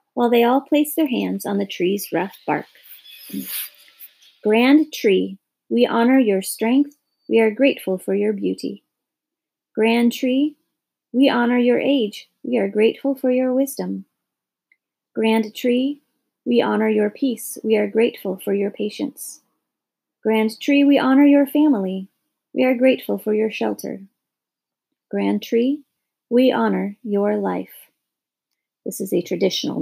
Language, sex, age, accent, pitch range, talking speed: English, female, 30-49, American, 200-270 Hz, 140 wpm